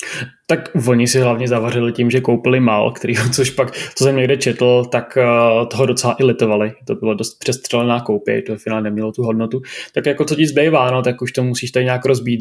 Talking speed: 210 wpm